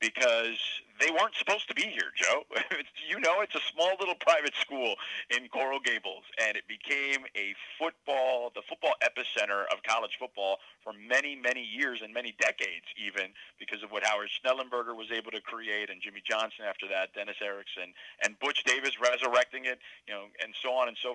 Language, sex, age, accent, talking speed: English, male, 40-59, American, 185 wpm